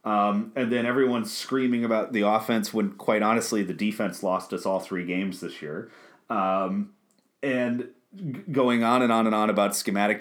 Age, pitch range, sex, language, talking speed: 30-49, 100-120 Hz, male, English, 175 wpm